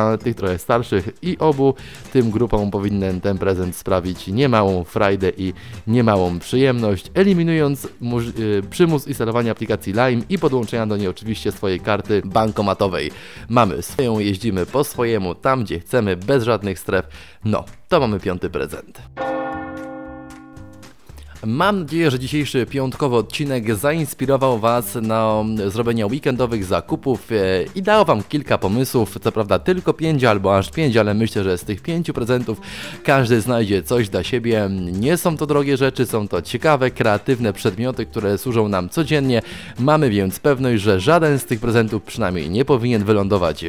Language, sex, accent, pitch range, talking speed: Polish, male, native, 100-130 Hz, 145 wpm